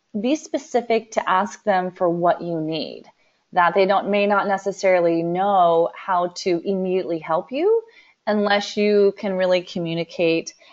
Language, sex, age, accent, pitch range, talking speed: English, female, 30-49, American, 170-205 Hz, 145 wpm